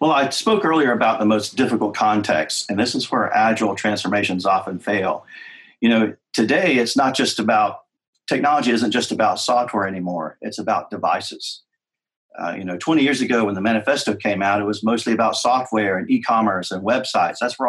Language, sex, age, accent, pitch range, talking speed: English, male, 40-59, American, 105-120 Hz, 185 wpm